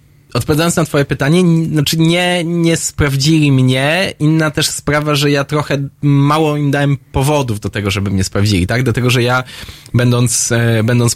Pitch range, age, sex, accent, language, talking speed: 115-140 Hz, 20-39, male, native, Polish, 170 wpm